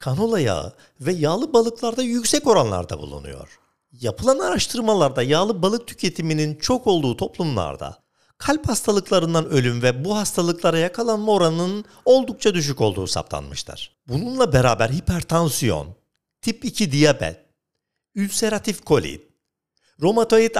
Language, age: Turkish, 50-69